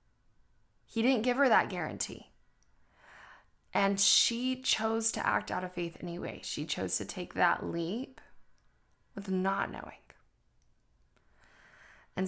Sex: female